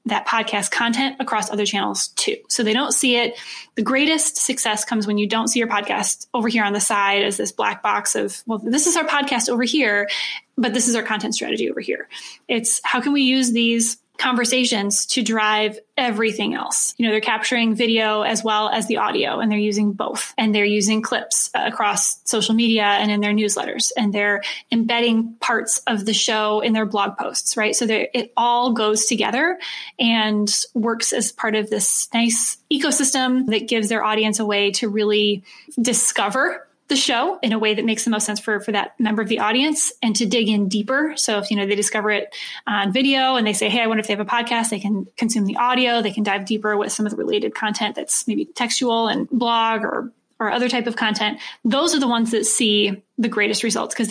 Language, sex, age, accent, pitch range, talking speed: English, female, 10-29, American, 215-245 Hz, 215 wpm